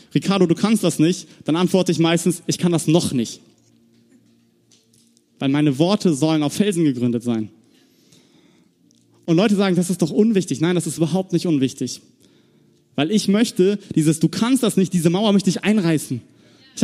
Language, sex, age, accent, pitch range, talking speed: German, male, 30-49, German, 140-195 Hz, 175 wpm